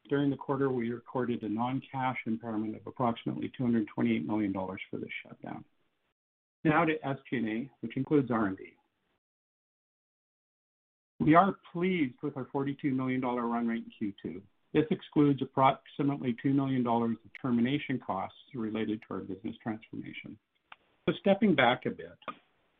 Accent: American